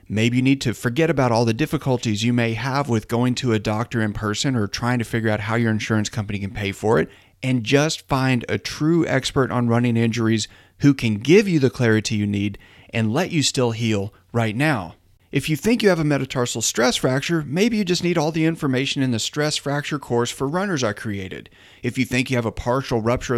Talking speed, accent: 230 wpm, American